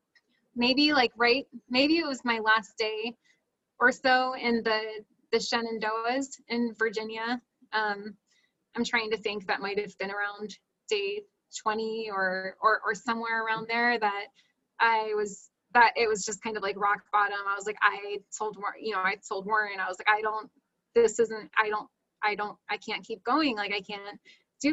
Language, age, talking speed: English, 20-39, 185 wpm